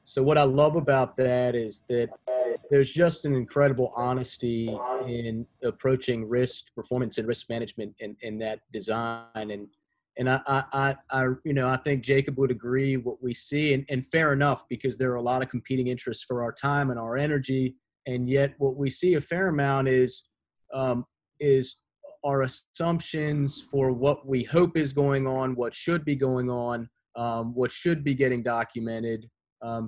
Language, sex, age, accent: English, male, 30-49, American